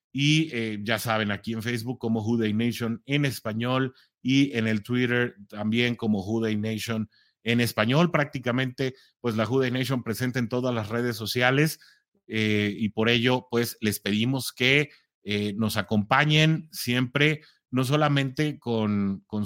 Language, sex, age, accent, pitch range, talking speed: English, male, 30-49, Mexican, 115-135 Hz, 150 wpm